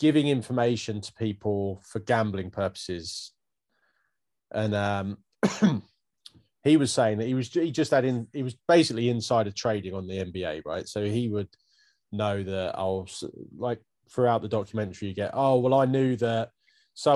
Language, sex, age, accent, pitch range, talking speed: English, male, 20-39, British, 100-120 Hz, 165 wpm